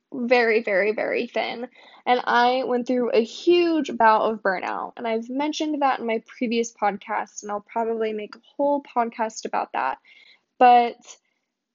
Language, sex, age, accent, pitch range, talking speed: English, female, 10-29, American, 215-255 Hz, 160 wpm